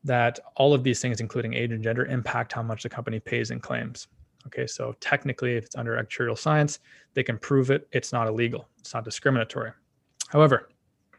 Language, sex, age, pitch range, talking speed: English, male, 20-39, 115-135 Hz, 195 wpm